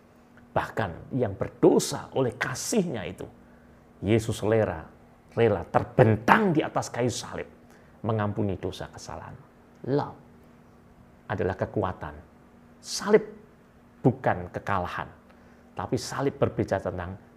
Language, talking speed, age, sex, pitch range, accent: Indonesian, 95 wpm, 40-59, male, 90-130 Hz, native